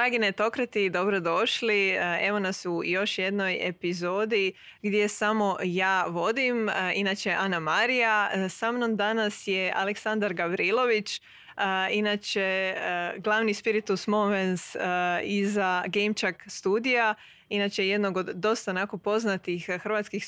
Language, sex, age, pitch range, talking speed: Croatian, female, 20-39, 185-215 Hz, 125 wpm